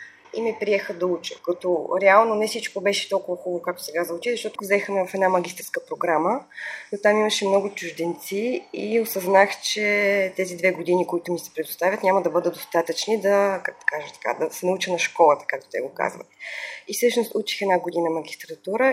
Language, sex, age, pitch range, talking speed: Bulgarian, female, 20-39, 175-210 Hz, 185 wpm